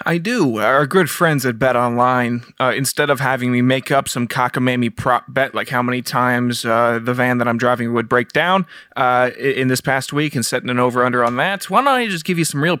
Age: 20-39